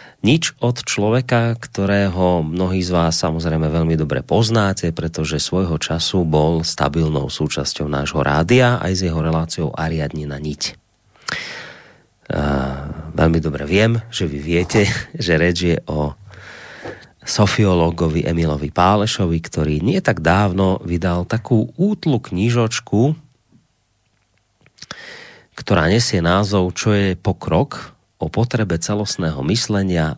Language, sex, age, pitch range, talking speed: Slovak, male, 30-49, 80-110 Hz, 115 wpm